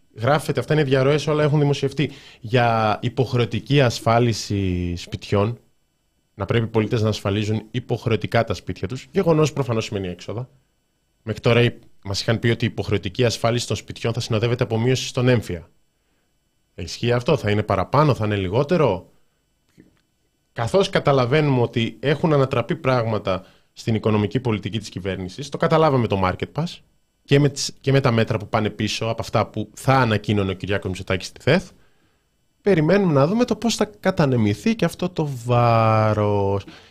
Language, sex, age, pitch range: Greek, male, 20-39, 105-135 Hz